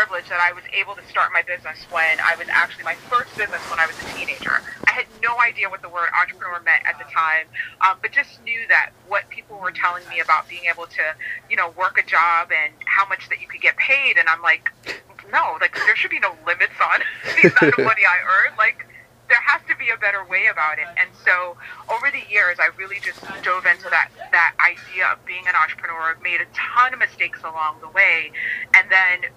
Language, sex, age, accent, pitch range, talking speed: English, female, 30-49, American, 165-230 Hz, 230 wpm